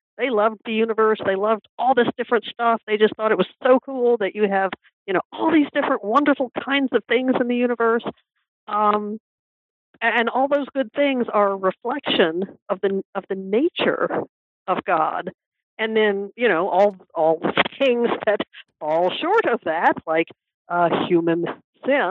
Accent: American